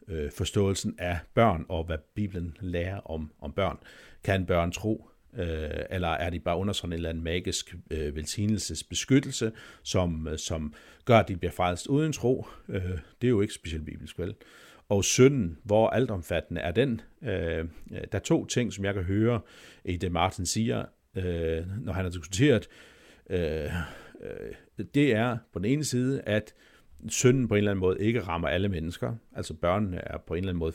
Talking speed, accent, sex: 185 wpm, native, male